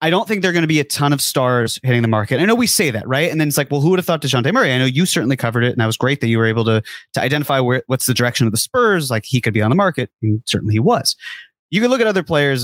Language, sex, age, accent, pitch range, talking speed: English, male, 30-49, American, 120-160 Hz, 340 wpm